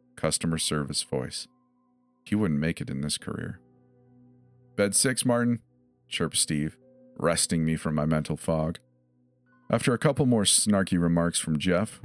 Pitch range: 75-115 Hz